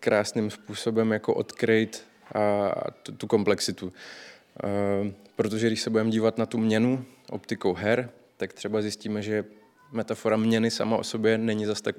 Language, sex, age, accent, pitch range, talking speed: Czech, male, 20-39, native, 100-115 Hz, 140 wpm